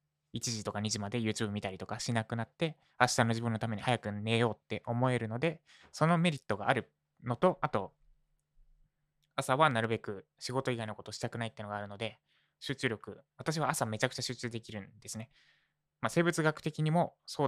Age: 20-39